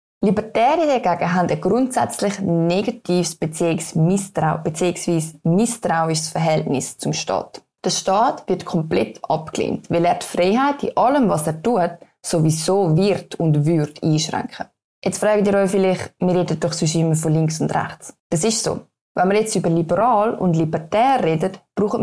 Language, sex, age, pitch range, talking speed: German, female, 20-39, 165-215 Hz, 160 wpm